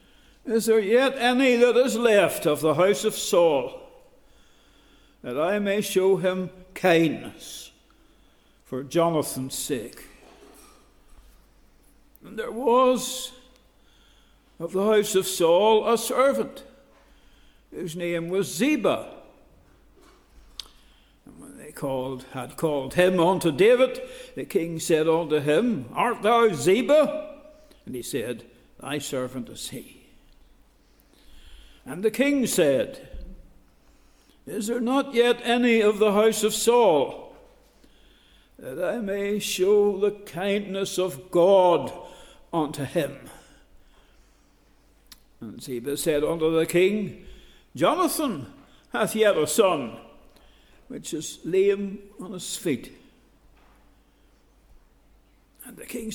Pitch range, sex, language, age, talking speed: 175-245 Hz, male, English, 60-79, 110 wpm